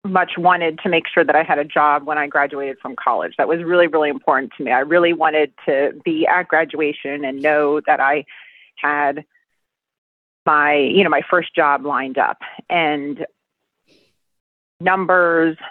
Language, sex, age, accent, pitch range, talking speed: English, female, 30-49, American, 150-180 Hz, 170 wpm